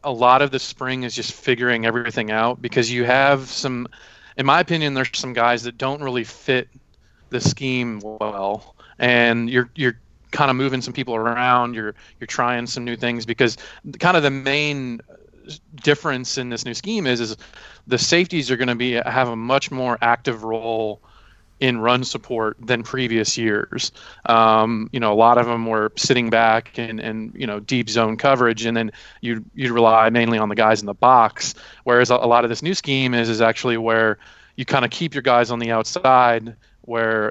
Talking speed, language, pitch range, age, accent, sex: 200 wpm, English, 115-130 Hz, 30-49, American, male